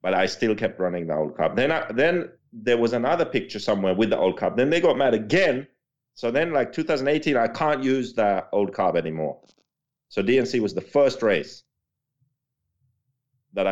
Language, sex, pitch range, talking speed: English, male, 105-170 Hz, 190 wpm